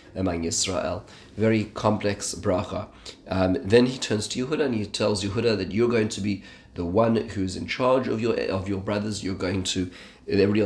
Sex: male